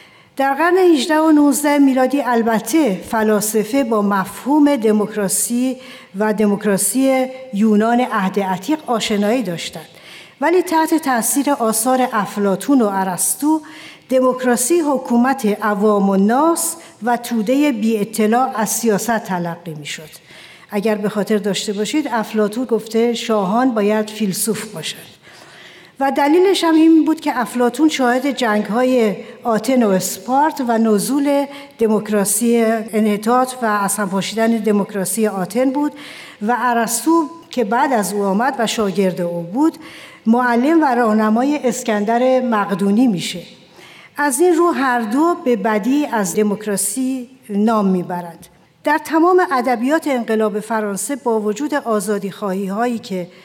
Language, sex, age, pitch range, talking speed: Persian, female, 60-79, 205-265 Hz, 120 wpm